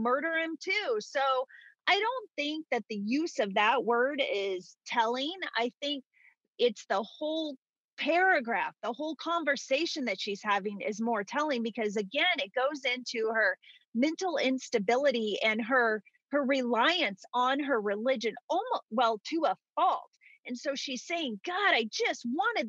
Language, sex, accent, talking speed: English, female, American, 155 wpm